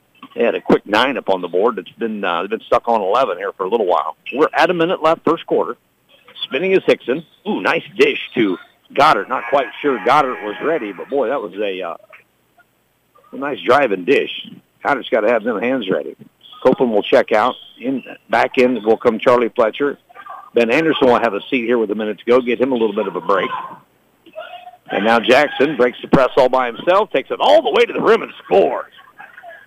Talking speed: 225 wpm